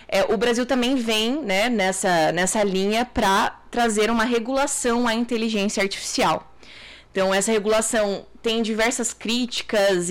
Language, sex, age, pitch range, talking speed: Portuguese, female, 20-39, 185-230 Hz, 125 wpm